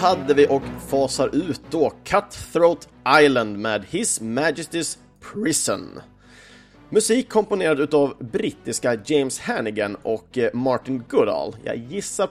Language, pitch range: Swedish, 115-150 Hz